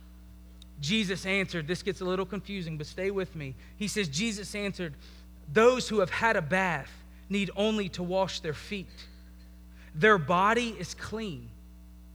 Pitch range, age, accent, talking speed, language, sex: 145-220 Hz, 30-49, American, 155 wpm, English, male